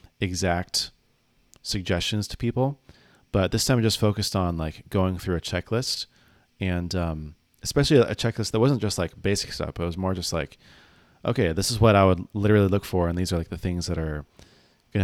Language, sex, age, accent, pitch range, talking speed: English, male, 30-49, American, 85-105 Hz, 200 wpm